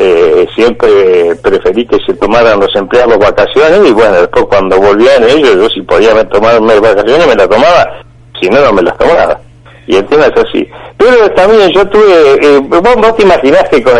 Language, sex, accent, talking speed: Spanish, male, Argentinian, 195 wpm